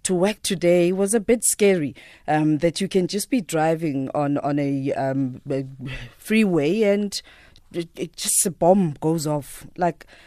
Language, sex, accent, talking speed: English, female, South African, 170 wpm